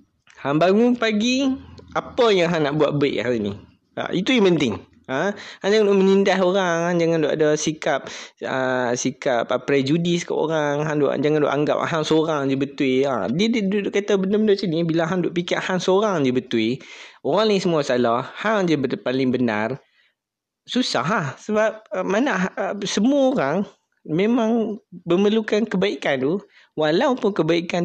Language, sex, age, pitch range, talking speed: Malay, male, 20-39, 135-185 Hz, 165 wpm